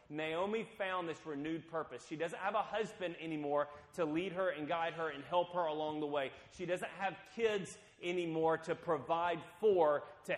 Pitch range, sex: 130-170 Hz, male